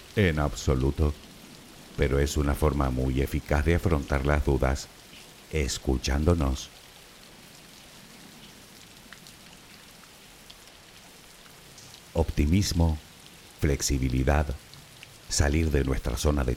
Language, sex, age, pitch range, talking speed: Spanish, male, 60-79, 70-90 Hz, 70 wpm